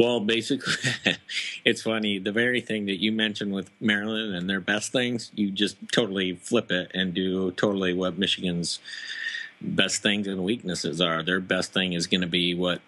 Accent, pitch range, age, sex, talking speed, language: American, 85-100 Hz, 50-69, male, 180 wpm, English